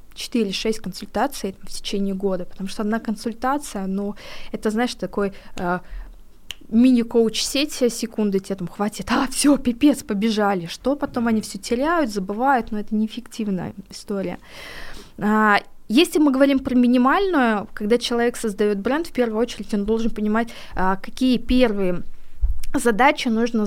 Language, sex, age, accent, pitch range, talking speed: Russian, female, 20-39, native, 200-240 Hz, 140 wpm